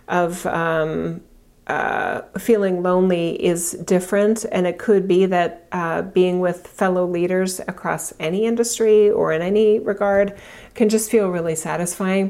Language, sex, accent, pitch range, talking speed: English, female, American, 165-200 Hz, 140 wpm